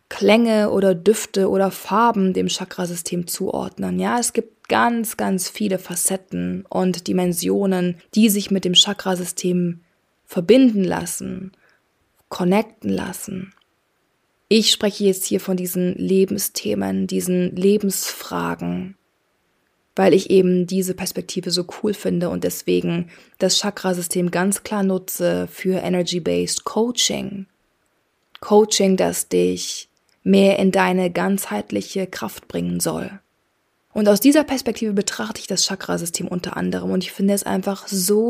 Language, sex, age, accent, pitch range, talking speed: German, female, 20-39, German, 180-210 Hz, 125 wpm